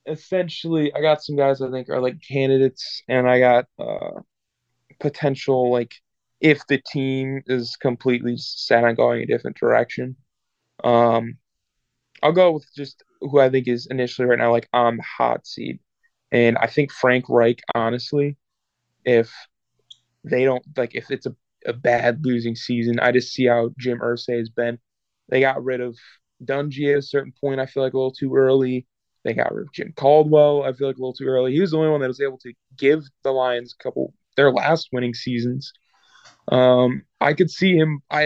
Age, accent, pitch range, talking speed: 20-39, American, 120-140 Hz, 190 wpm